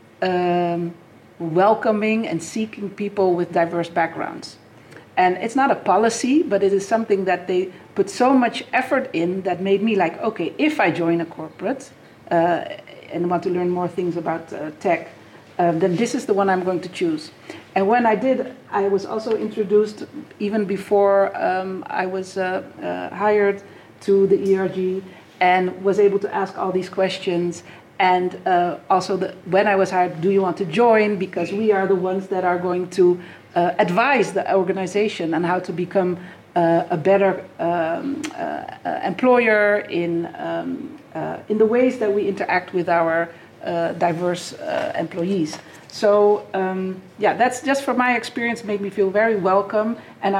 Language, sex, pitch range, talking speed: English, female, 180-210 Hz, 170 wpm